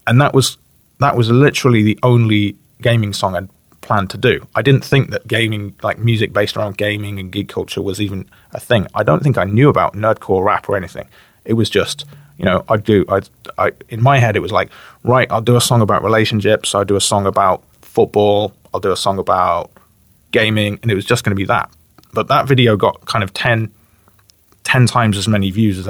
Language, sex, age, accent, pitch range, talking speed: English, male, 30-49, British, 100-120 Hz, 220 wpm